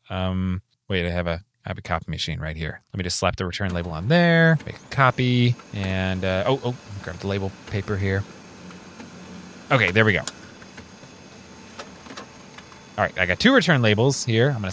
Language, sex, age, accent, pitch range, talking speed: English, male, 20-39, American, 100-140 Hz, 185 wpm